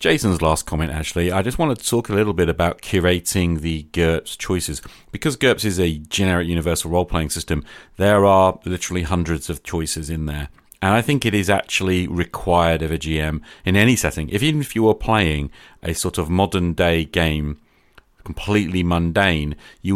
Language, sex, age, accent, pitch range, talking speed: English, male, 40-59, British, 80-100 Hz, 180 wpm